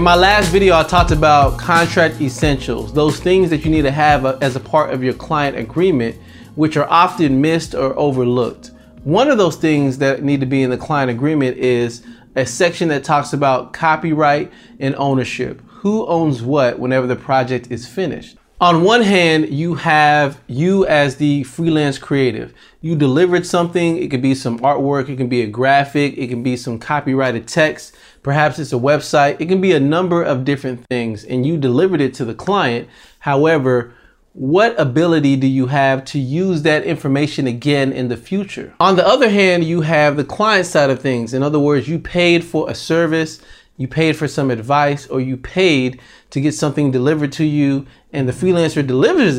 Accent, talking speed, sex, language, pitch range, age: American, 190 wpm, male, English, 130-160 Hz, 30-49